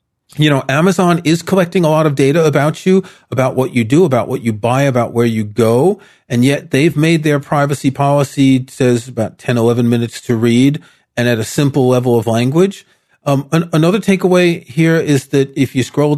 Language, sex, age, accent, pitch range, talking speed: English, male, 40-59, American, 125-155 Hz, 195 wpm